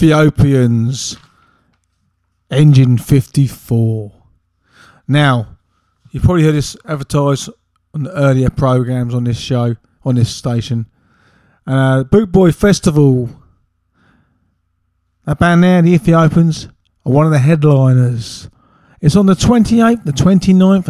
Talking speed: 115 wpm